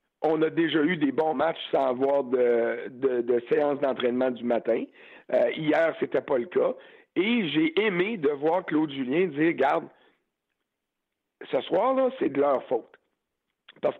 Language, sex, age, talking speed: French, male, 60-79, 165 wpm